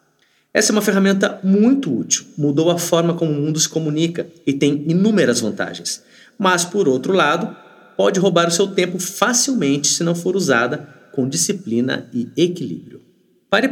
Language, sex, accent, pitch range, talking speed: Portuguese, male, Brazilian, 145-200 Hz, 160 wpm